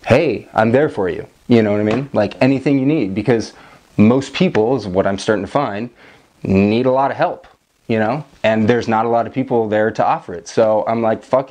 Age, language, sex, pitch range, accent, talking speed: 20-39, English, male, 105-135 Hz, American, 235 wpm